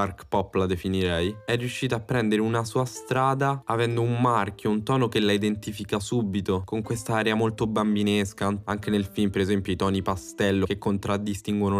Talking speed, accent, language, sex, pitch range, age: 175 wpm, native, Italian, male, 95-115 Hz, 10-29